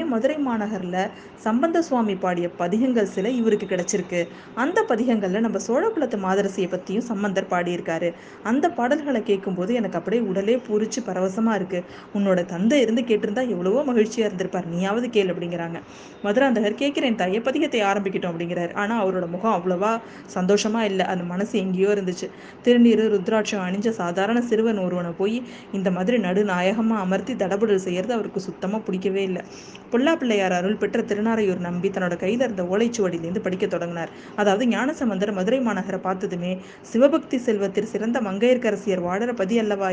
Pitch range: 190-230 Hz